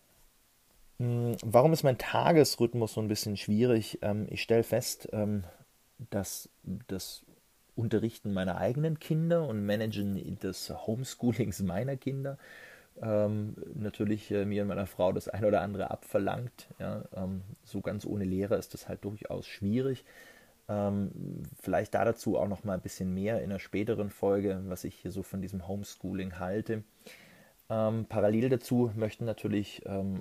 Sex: male